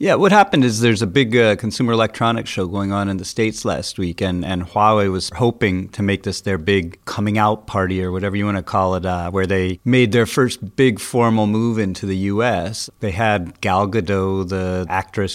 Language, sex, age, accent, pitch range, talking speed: English, male, 40-59, American, 95-110 Hz, 220 wpm